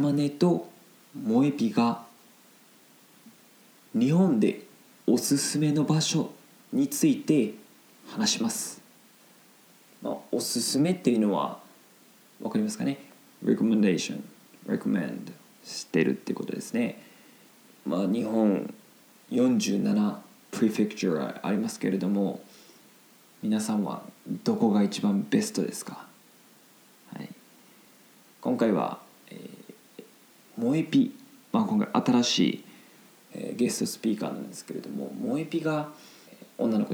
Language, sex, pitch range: Japanese, male, 155-245 Hz